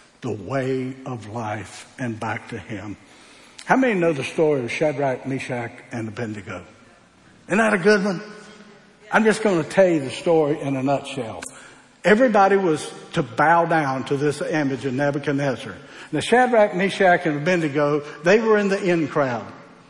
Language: English